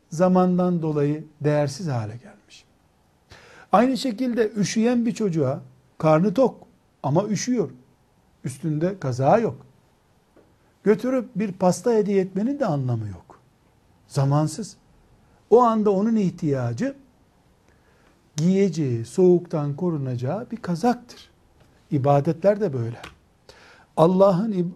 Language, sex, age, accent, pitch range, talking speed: Turkish, male, 60-79, native, 140-205 Hz, 95 wpm